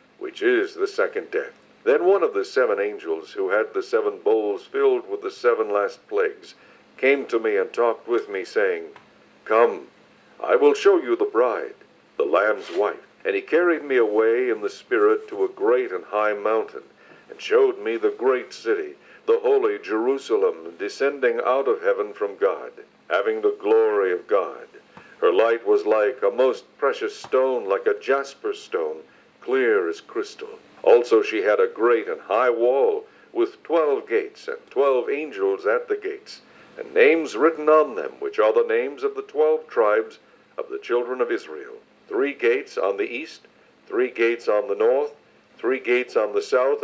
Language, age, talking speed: English, 60-79, 180 wpm